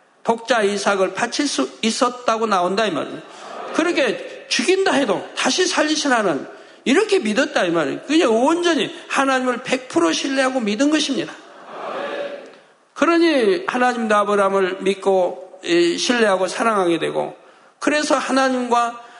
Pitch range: 205-280 Hz